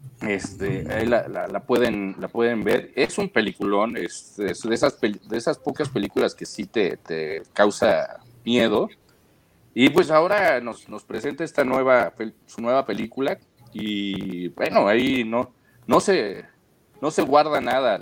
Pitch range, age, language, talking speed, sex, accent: 105-130 Hz, 40-59, Spanish, 155 wpm, male, Mexican